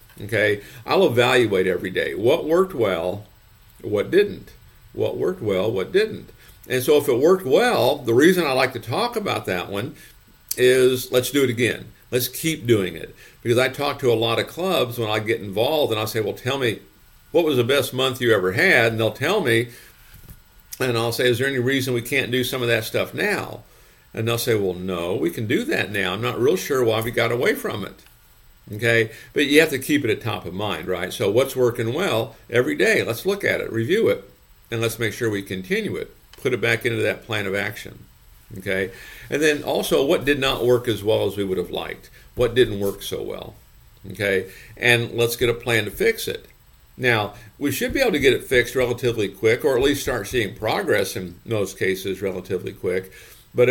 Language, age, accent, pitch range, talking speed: English, 50-69, American, 110-135 Hz, 220 wpm